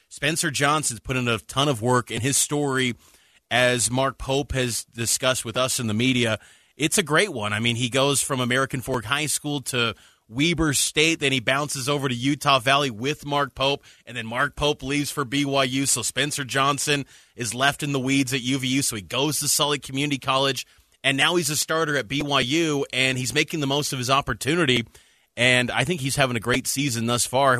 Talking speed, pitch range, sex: 210 wpm, 125-150 Hz, male